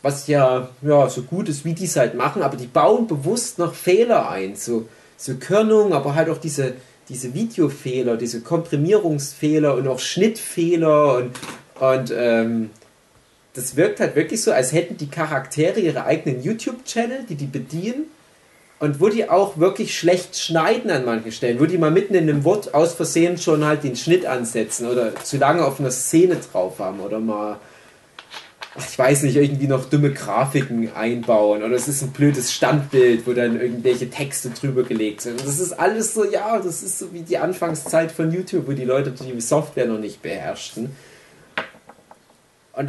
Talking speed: 180 wpm